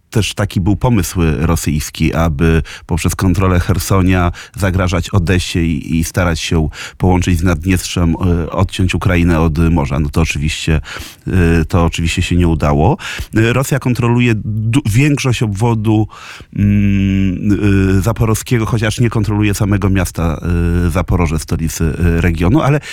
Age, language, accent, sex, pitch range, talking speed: 30-49, Polish, native, male, 90-120 Hz, 135 wpm